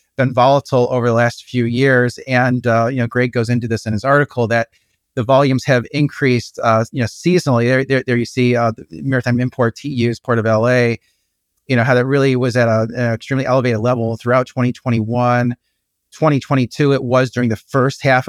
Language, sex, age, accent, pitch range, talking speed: English, male, 30-49, American, 115-130 Hz, 200 wpm